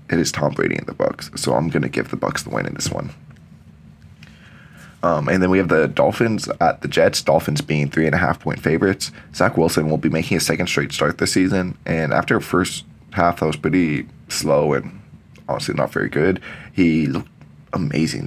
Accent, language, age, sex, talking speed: American, English, 20-39, male, 210 wpm